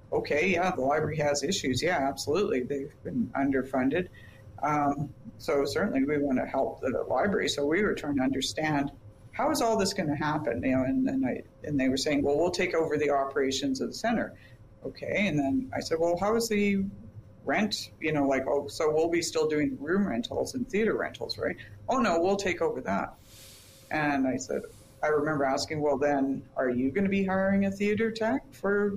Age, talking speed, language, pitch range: 50-69, 210 wpm, English, 135-200 Hz